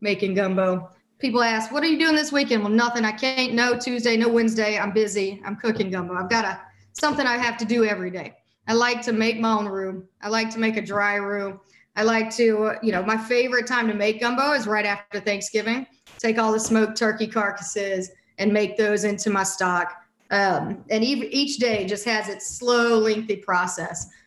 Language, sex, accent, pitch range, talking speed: English, female, American, 200-235 Hz, 205 wpm